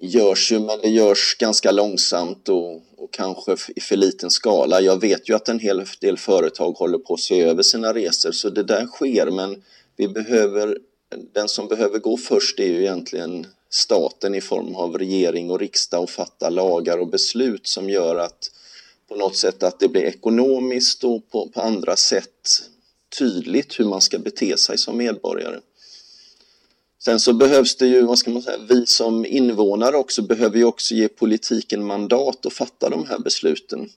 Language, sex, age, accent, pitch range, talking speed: Swedish, male, 30-49, native, 105-125 Hz, 180 wpm